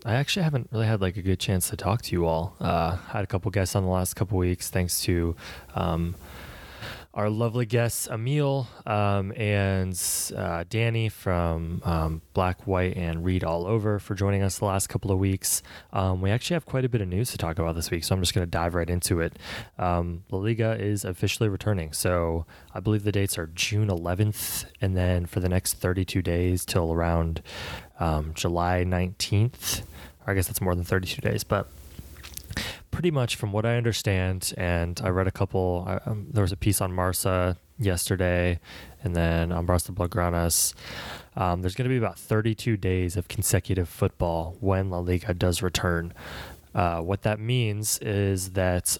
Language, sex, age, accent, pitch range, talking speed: English, male, 20-39, American, 85-105 Hz, 190 wpm